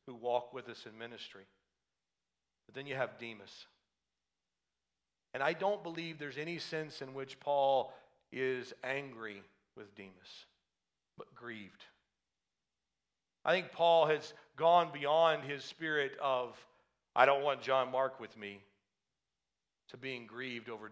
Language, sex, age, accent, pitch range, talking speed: English, male, 50-69, American, 100-140 Hz, 130 wpm